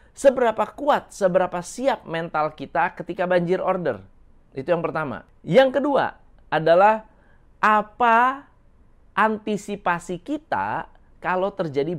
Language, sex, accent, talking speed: Indonesian, male, native, 100 wpm